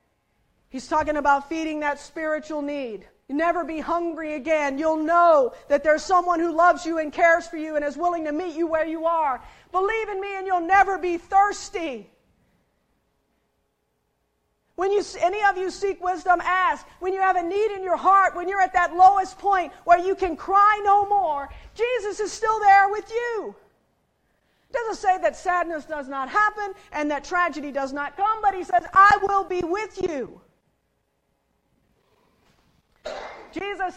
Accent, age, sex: American, 40-59, female